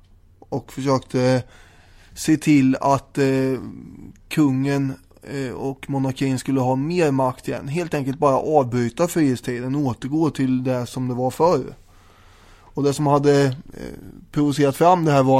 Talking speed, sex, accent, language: 135 wpm, male, Swedish, English